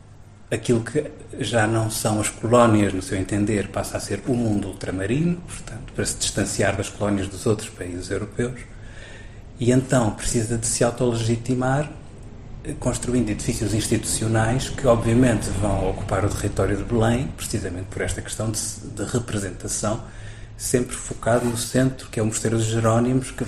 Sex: male